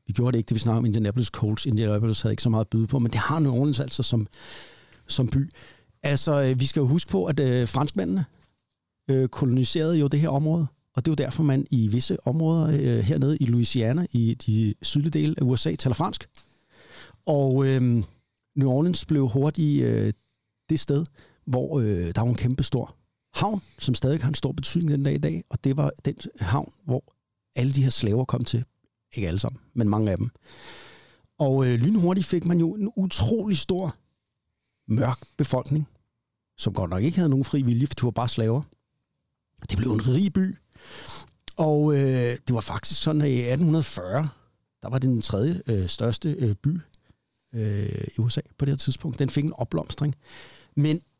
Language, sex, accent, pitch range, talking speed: Danish, male, native, 115-150 Hz, 195 wpm